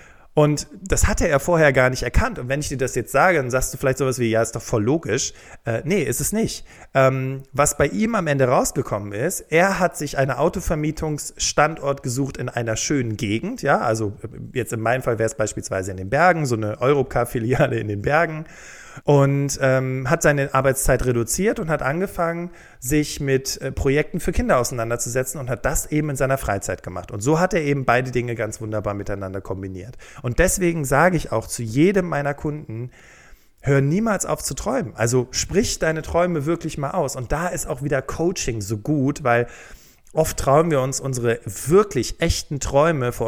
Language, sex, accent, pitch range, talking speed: German, male, German, 120-150 Hz, 195 wpm